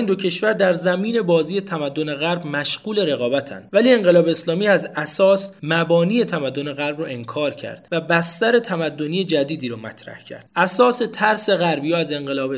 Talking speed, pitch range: 155 wpm, 140-180 Hz